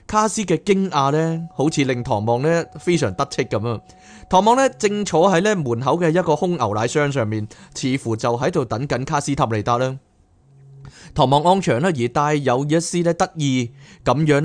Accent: native